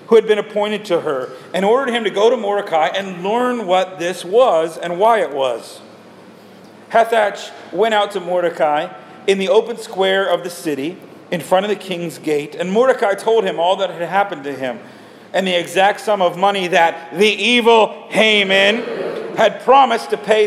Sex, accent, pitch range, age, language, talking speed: male, American, 170-220 Hz, 40-59, English, 190 wpm